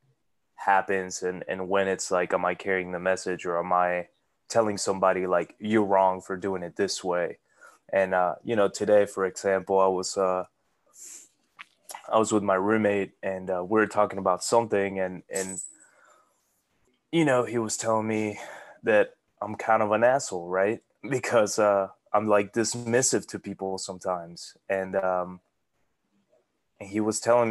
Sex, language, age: male, English, 20-39